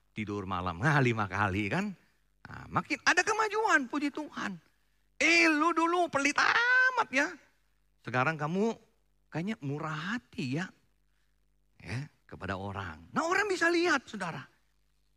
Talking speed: 125 wpm